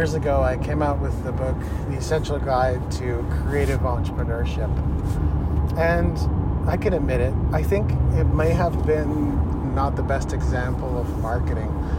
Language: English